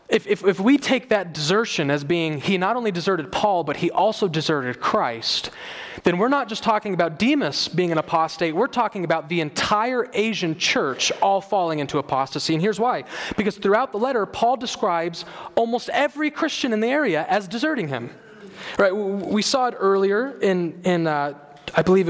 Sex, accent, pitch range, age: male, American, 175-230 Hz, 30-49